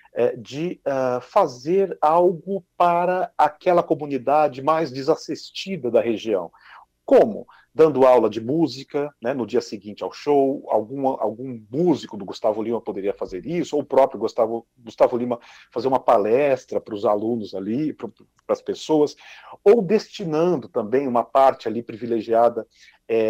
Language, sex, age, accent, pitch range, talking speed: Portuguese, male, 50-69, Brazilian, 125-180 Hz, 135 wpm